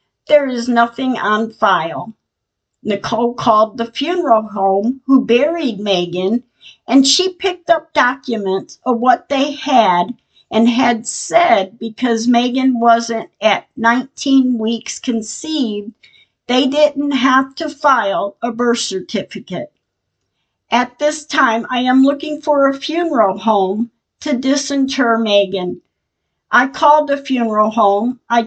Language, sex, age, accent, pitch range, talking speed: English, female, 50-69, American, 225-275 Hz, 125 wpm